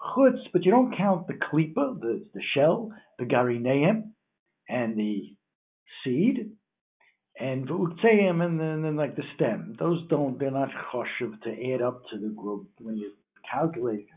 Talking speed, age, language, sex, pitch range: 155 wpm, 60-79, English, male, 115-160 Hz